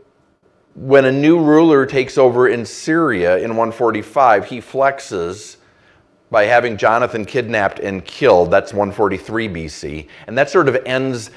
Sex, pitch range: male, 110-145 Hz